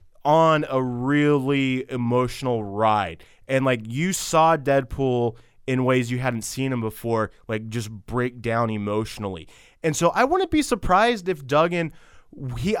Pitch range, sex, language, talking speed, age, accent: 120-150 Hz, male, English, 145 wpm, 20-39, American